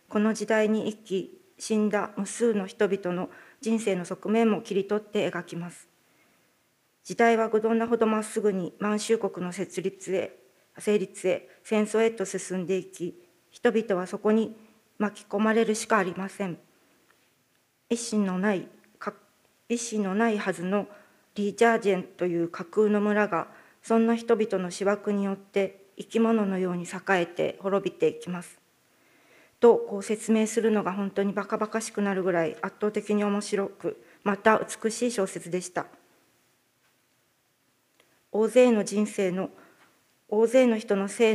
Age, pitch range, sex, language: 40-59, 190-220 Hz, female, Japanese